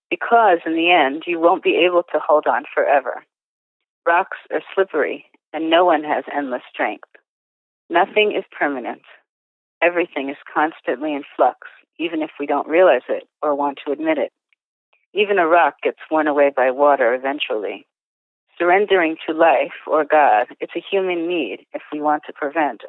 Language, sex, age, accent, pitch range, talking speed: English, female, 40-59, American, 145-200 Hz, 165 wpm